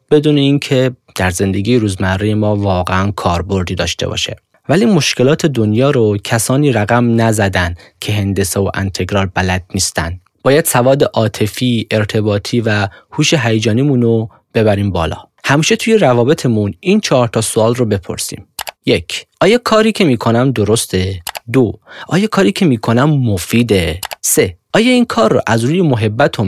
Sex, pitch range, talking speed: male, 100-125 Hz, 140 wpm